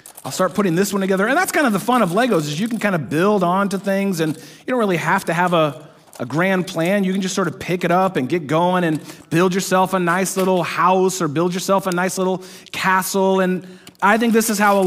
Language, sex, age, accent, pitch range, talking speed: English, male, 30-49, American, 175-205 Hz, 260 wpm